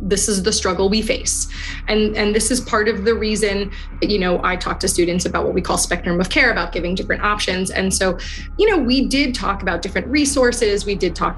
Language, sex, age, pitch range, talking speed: English, female, 20-39, 185-235 Hz, 230 wpm